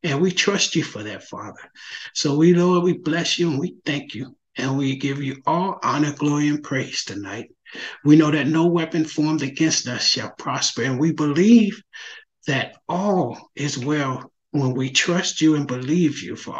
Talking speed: 190 wpm